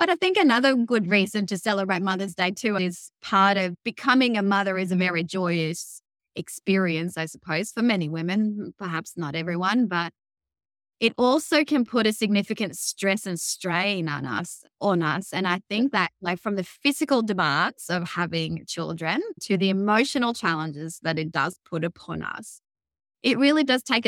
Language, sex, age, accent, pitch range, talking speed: English, female, 20-39, Australian, 170-210 Hz, 175 wpm